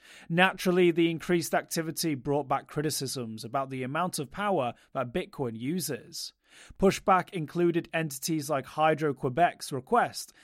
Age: 30-49